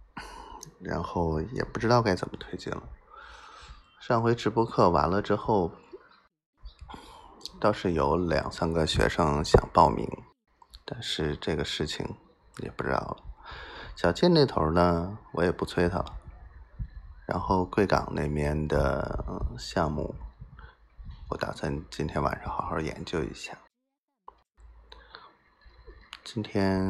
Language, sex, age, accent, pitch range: Chinese, male, 20-39, native, 75-105 Hz